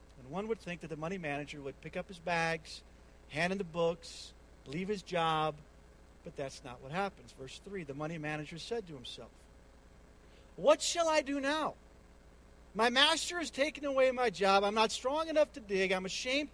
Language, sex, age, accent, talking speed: English, male, 50-69, American, 190 wpm